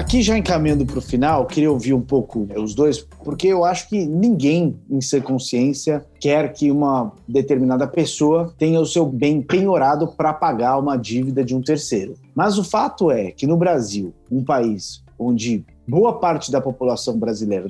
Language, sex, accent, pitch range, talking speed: Portuguese, male, Brazilian, 130-185 Hz, 185 wpm